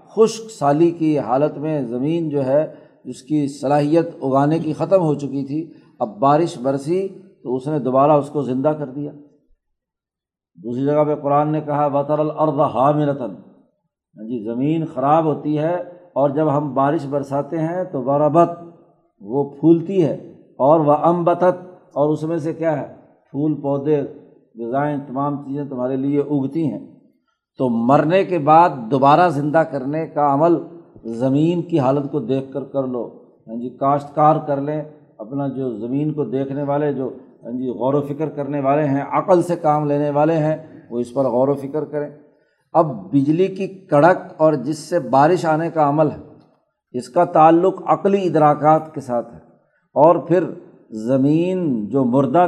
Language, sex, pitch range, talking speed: Urdu, male, 140-165 Hz, 165 wpm